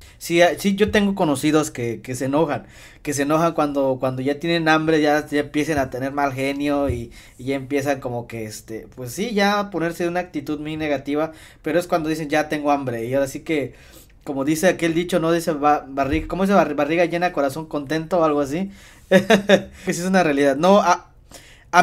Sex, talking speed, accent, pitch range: male, 205 wpm, Mexican, 140-170 Hz